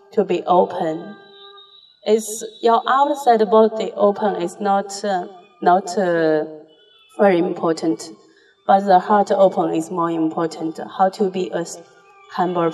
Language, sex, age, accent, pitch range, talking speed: Hindi, female, 20-39, Chinese, 165-210 Hz, 140 wpm